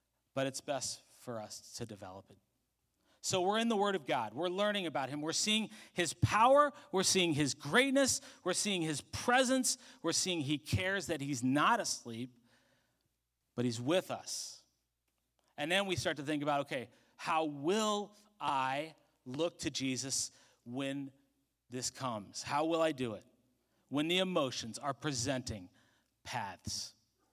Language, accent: English, American